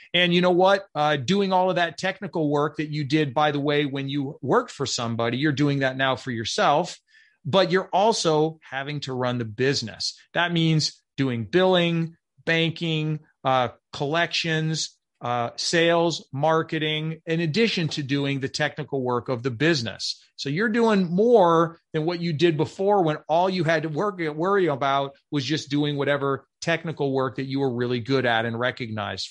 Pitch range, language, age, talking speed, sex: 135-175 Hz, English, 40-59, 175 wpm, male